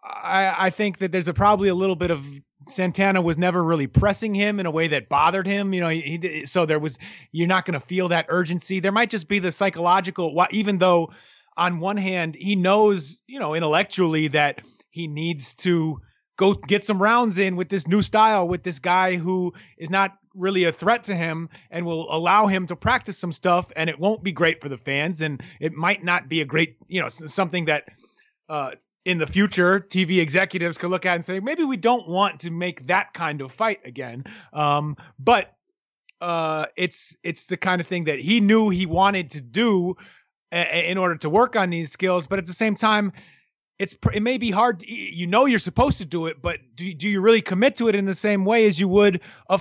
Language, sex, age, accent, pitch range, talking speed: English, male, 30-49, American, 165-200 Hz, 220 wpm